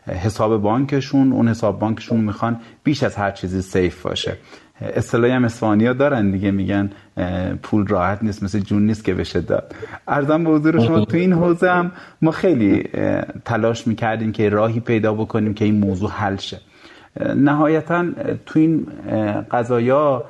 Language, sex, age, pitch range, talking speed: Persian, male, 30-49, 105-130 Hz, 155 wpm